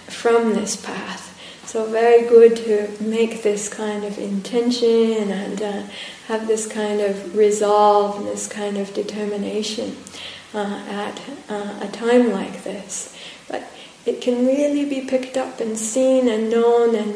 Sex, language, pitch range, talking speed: female, English, 210-240 Hz, 145 wpm